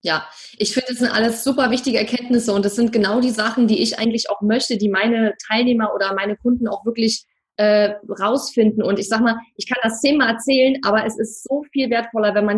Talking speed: 225 wpm